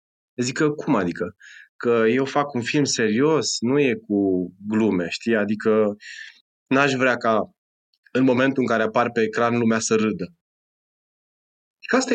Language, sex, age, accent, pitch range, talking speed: Romanian, male, 20-39, native, 105-145 Hz, 155 wpm